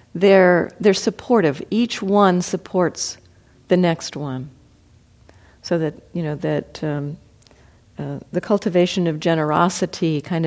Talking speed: 120 wpm